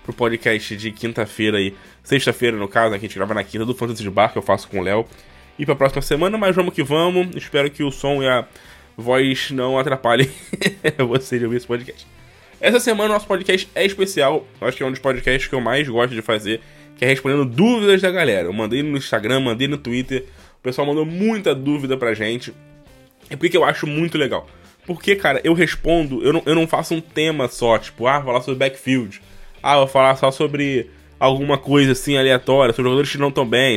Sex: male